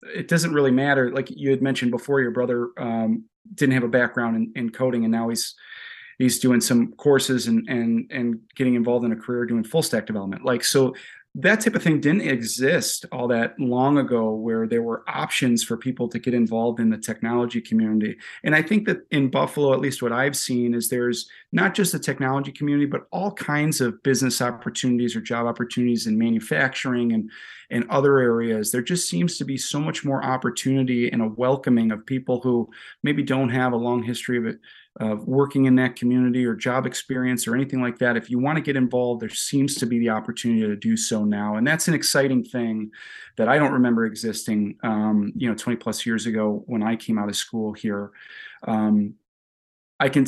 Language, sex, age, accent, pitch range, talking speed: English, male, 30-49, American, 115-135 Hz, 210 wpm